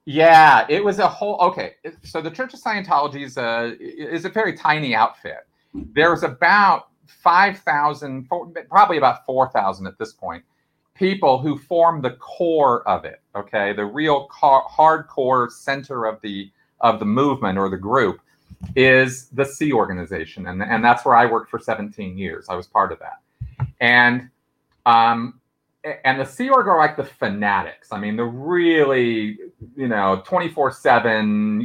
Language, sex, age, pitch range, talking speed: English, male, 40-59, 115-165 Hz, 160 wpm